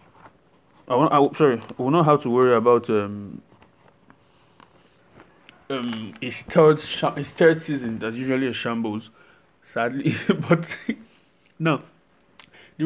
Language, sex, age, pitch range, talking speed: English, male, 20-39, 115-145 Hz, 125 wpm